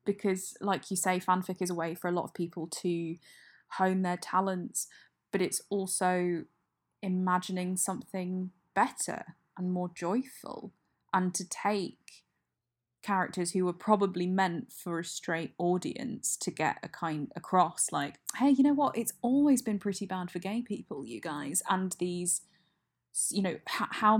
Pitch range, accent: 170-195 Hz, British